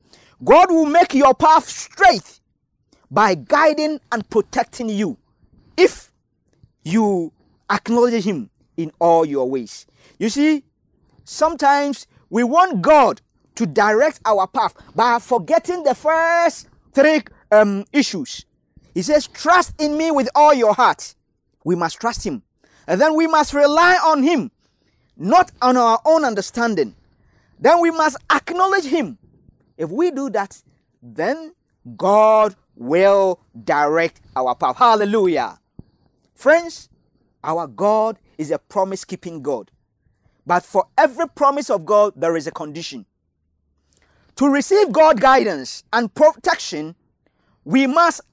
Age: 40-59